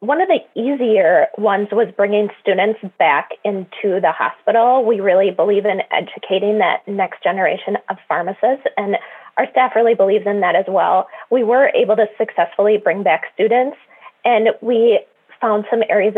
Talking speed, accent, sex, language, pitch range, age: 165 wpm, American, female, English, 205-255 Hz, 20-39